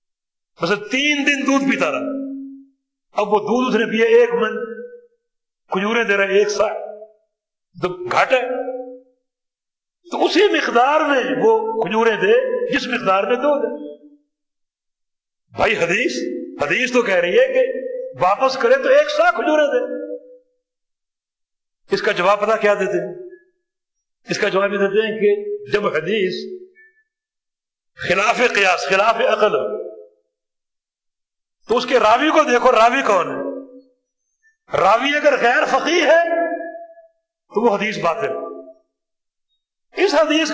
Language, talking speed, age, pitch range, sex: Urdu, 130 wpm, 60-79, 220-345 Hz, male